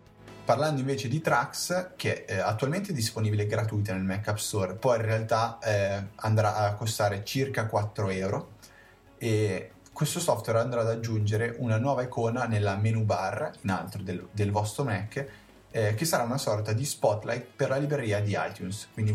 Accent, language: native, Italian